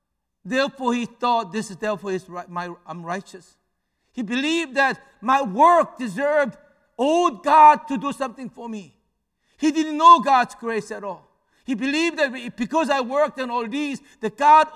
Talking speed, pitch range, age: 160 wpm, 195-265 Hz, 60-79